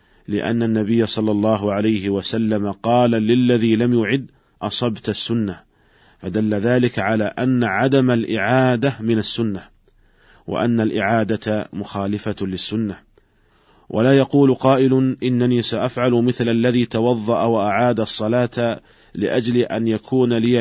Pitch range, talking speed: 110-125 Hz, 110 wpm